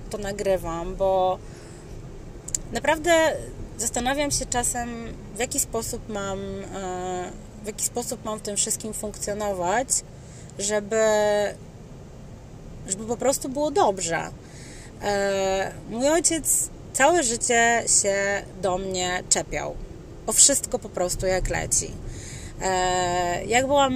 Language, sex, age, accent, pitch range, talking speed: Polish, female, 30-49, native, 185-215 Hz, 105 wpm